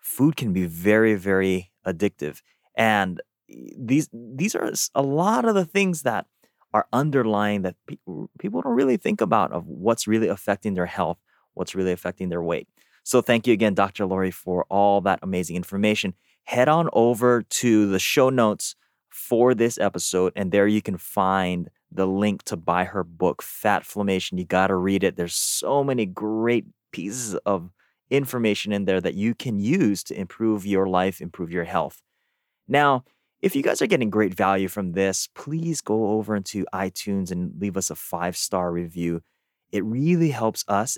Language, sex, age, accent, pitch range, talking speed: English, male, 30-49, American, 95-110 Hz, 175 wpm